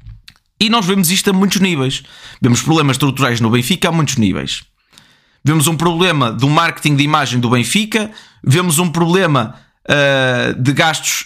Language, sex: Portuguese, male